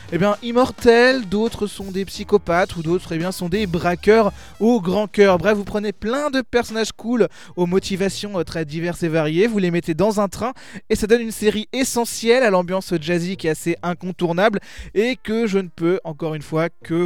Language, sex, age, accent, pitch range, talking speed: French, male, 20-39, French, 175-215 Hz, 210 wpm